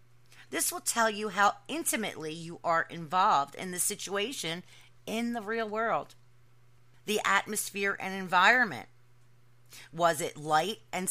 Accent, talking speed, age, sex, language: American, 130 wpm, 40-59, female, English